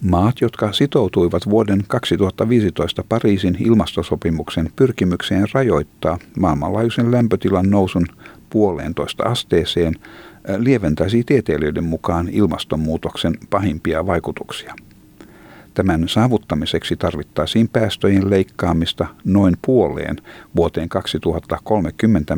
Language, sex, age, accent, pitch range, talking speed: Finnish, male, 50-69, native, 85-105 Hz, 80 wpm